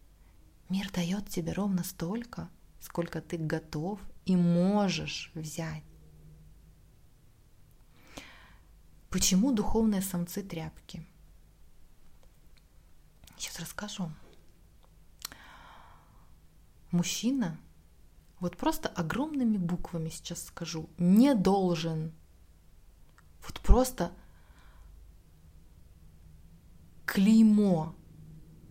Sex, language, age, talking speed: female, Russian, 20-39, 60 wpm